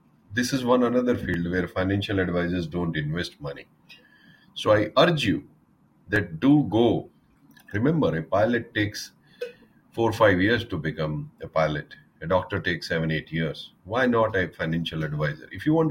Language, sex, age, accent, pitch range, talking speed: Hindi, male, 30-49, native, 80-115 Hz, 165 wpm